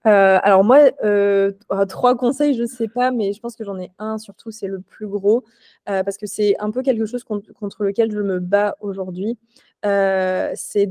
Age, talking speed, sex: 20-39, 210 wpm, female